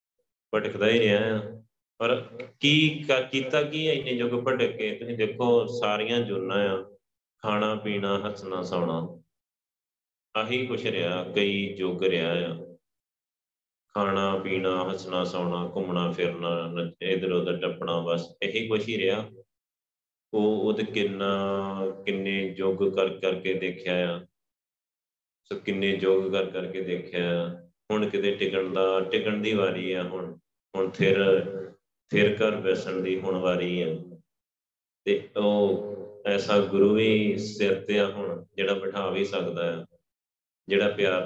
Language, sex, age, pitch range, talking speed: Punjabi, male, 30-49, 85-100 Hz, 130 wpm